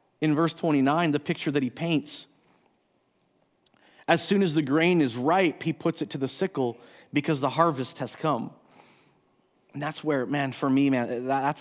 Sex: male